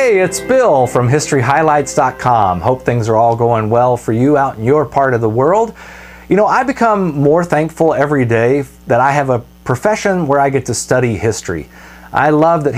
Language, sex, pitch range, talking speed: English, male, 110-150 Hz, 195 wpm